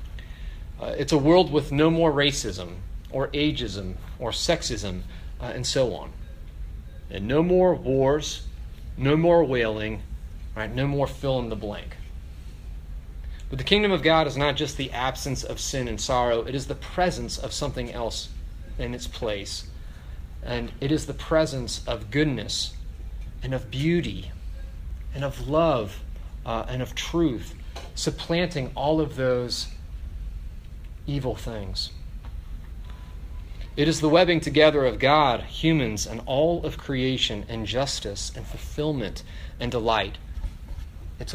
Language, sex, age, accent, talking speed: English, male, 30-49, American, 140 wpm